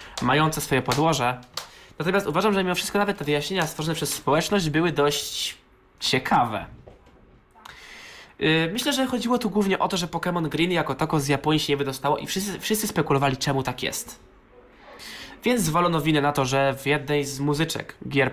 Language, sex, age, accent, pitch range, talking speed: Polish, male, 20-39, native, 130-180 Hz, 175 wpm